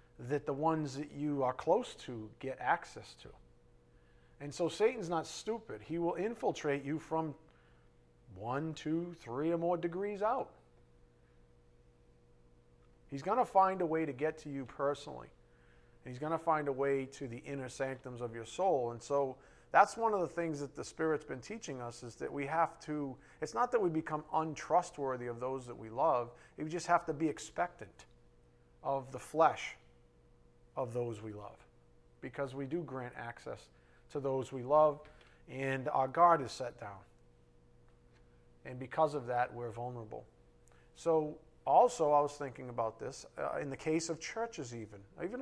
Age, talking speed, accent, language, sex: 40-59, 170 wpm, American, English, male